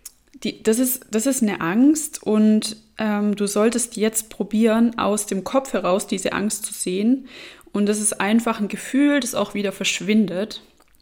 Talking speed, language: 160 wpm, German